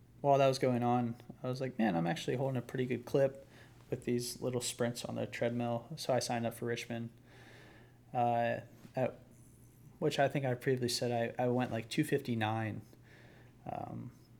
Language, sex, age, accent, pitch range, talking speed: English, male, 20-39, American, 115-130 Hz, 175 wpm